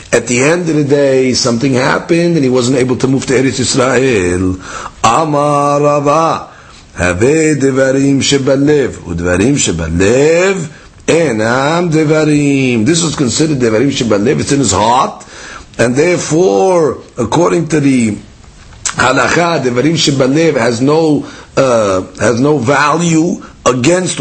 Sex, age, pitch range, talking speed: male, 50-69, 125-160 Hz, 100 wpm